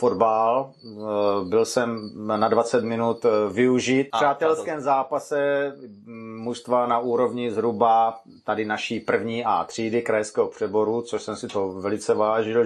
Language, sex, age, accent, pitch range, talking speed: Czech, male, 30-49, native, 115-150 Hz, 130 wpm